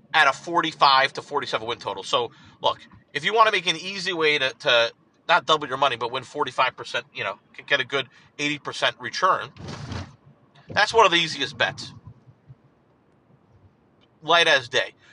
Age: 40-59